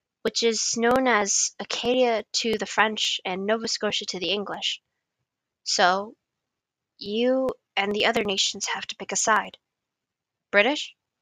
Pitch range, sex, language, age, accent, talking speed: 205-250 Hz, female, English, 10-29, American, 140 wpm